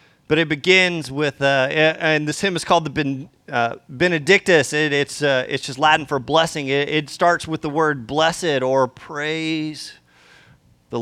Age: 30-49